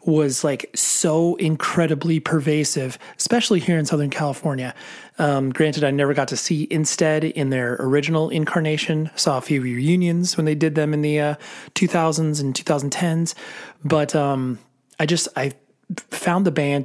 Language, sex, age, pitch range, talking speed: English, male, 30-49, 145-175 Hz, 155 wpm